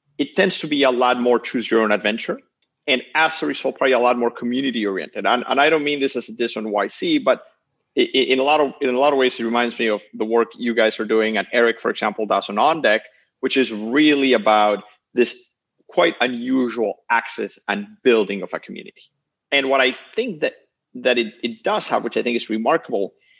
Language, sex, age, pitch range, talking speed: English, male, 30-49, 110-135 Hz, 215 wpm